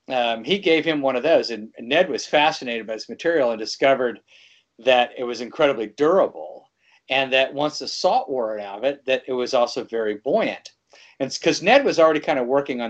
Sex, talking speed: male, 215 wpm